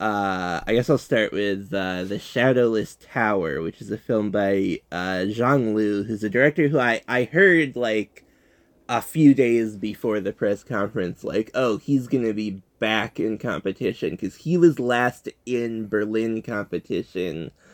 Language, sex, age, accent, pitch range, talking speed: English, male, 20-39, American, 100-125 Hz, 160 wpm